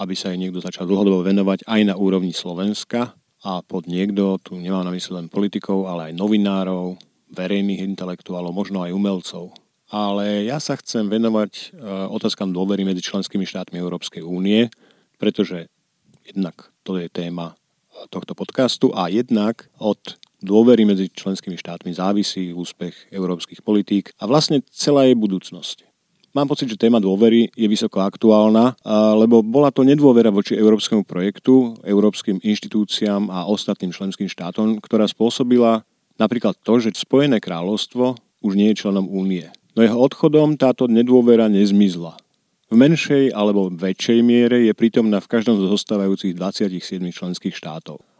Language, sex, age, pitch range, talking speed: Slovak, male, 40-59, 95-110 Hz, 145 wpm